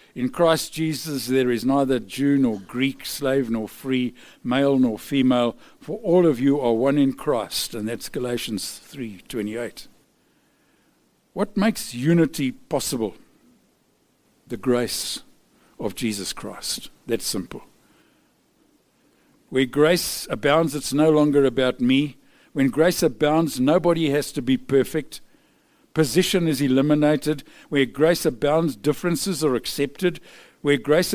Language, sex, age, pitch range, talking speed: English, male, 60-79, 130-165 Hz, 125 wpm